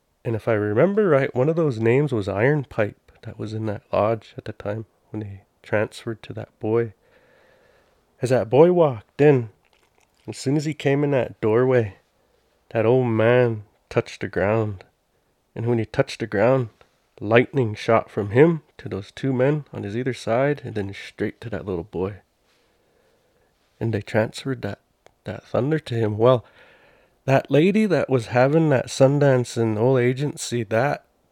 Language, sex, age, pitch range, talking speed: English, male, 30-49, 110-140 Hz, 170 wpm